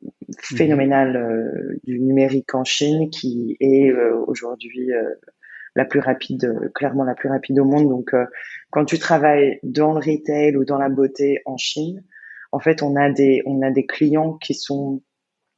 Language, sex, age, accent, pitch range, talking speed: French, female, 20-39, French, 130-145 Hz, 175 wpm